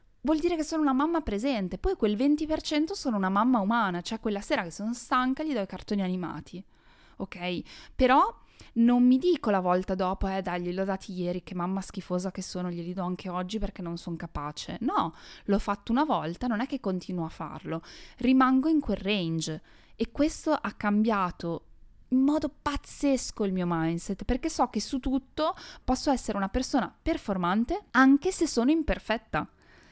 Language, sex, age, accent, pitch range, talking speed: Italian, female, 10-29, native, 185-255 Hz, 180 wpm